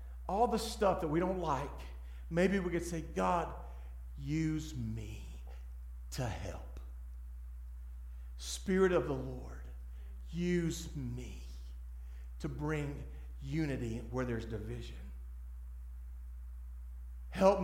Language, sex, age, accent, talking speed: English, male, 50-69, American, 100 wpm